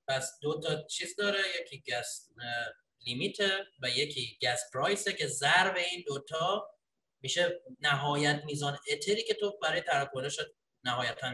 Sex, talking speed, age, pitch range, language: male, 130 wpm, 30-49, 130-200 Hz, Persian